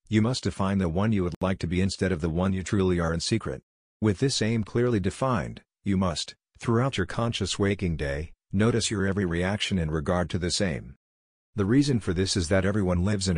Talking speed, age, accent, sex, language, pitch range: 220 wpm, 50-69, American, male, English, 90-105 Hz